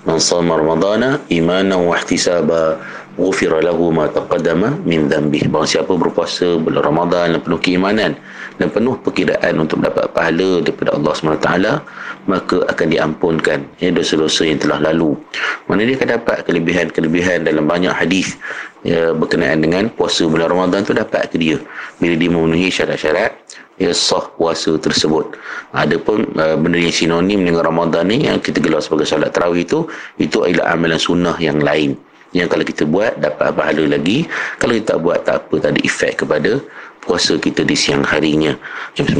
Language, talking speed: Malay, 155 wpm